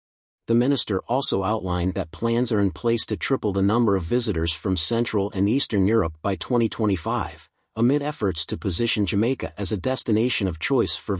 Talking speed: 175 wpm